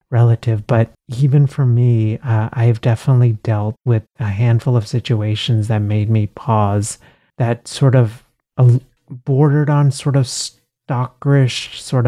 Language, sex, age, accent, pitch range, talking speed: English, male, 30-49, American, 110-130 Hz, 135 wpm